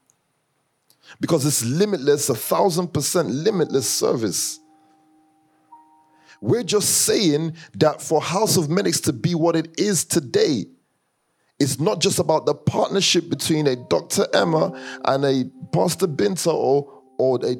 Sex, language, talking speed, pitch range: male, English, 130 wpm, 130-180 Hz